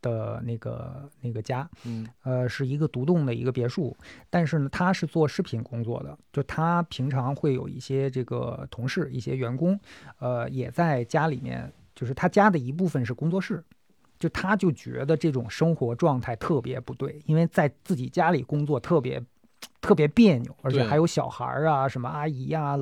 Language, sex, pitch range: Chinese, male, 125-165 Hz